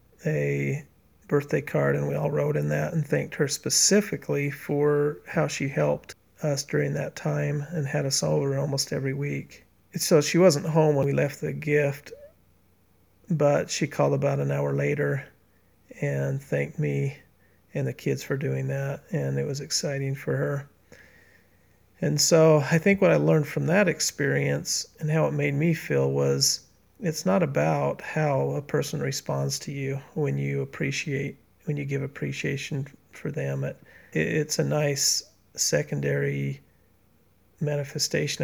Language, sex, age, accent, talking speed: English, male, 40-59, American, 155 wpm